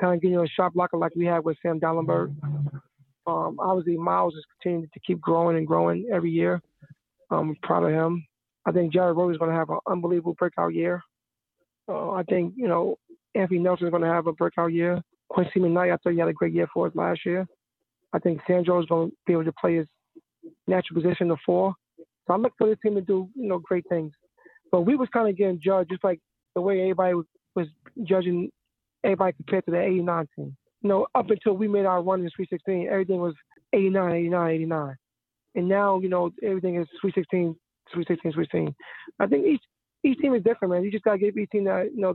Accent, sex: American, male